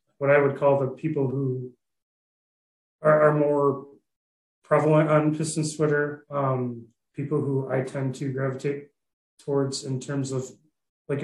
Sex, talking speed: male, 140 wpm